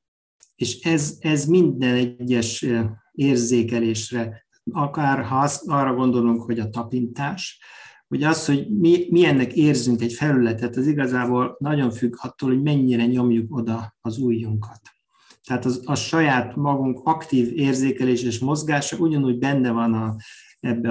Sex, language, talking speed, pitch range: male, Hungarian, 130 wpm, 115-140 Hz